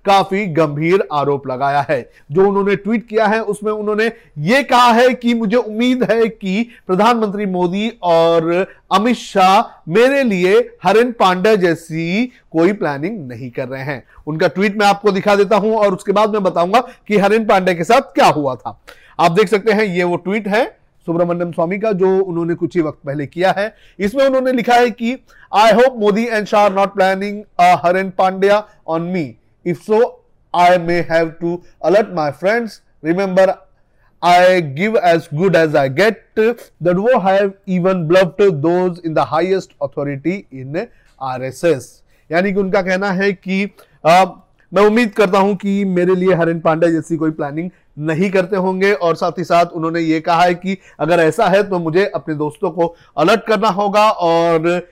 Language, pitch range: Hindi, 170-215 Hz